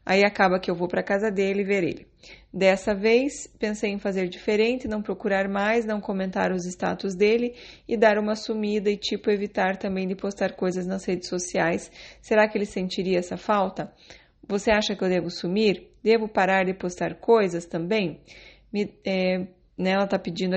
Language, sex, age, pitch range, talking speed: Portuguese, female, 20-39, 180-215 Hz, 180 wpm